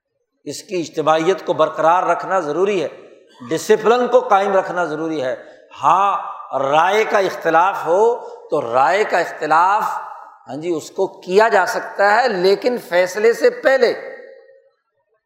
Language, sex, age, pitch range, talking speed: Urdu, male, 60-79, 180-250 Hz, 140 wpm